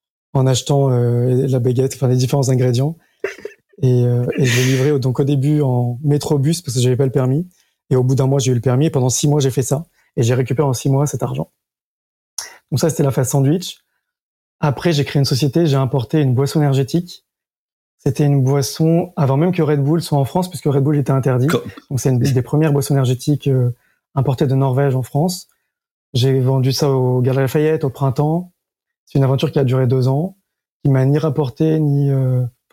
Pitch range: 130-155 Hz